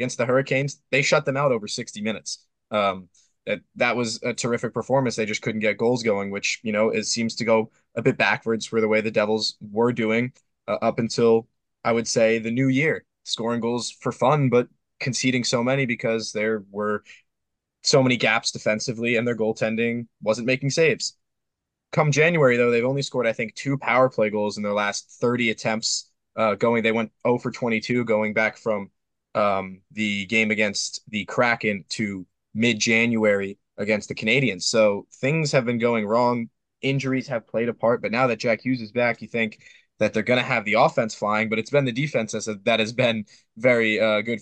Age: 20-39